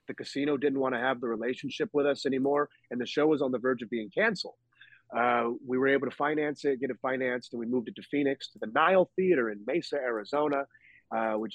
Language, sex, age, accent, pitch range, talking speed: English, male, 30-49, American, 110-135 Hz, 240 wpm